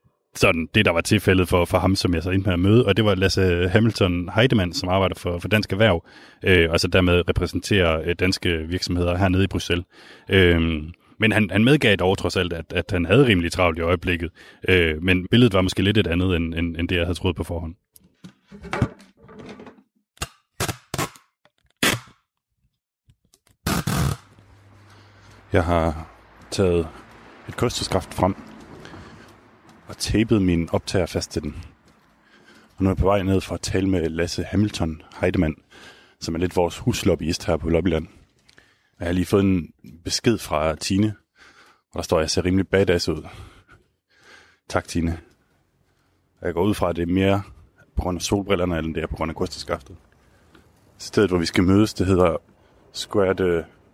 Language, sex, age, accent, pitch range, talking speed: Danish, male, 30-49, native, 85-105 Hz, 170 wpm